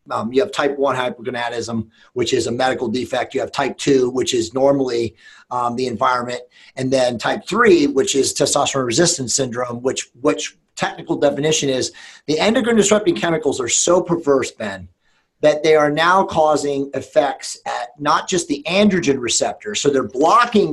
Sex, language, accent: male, English, American